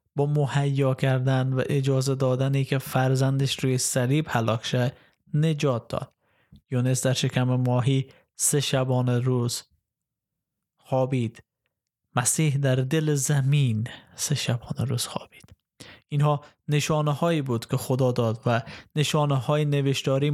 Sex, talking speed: male, 120 wpm